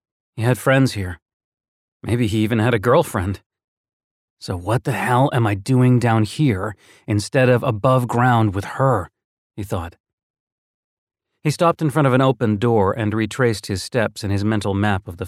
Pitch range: 95-120 Hz